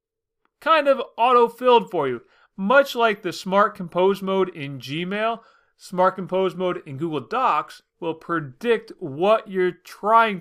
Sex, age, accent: male, 30-49, American